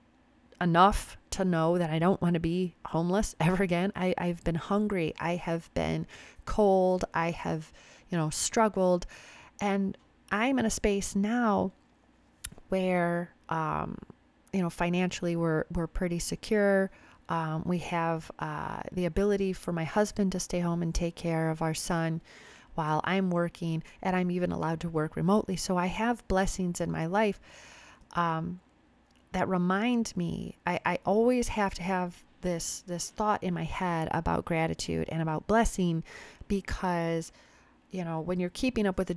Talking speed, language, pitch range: 160 wpm, English, 165-200 Hz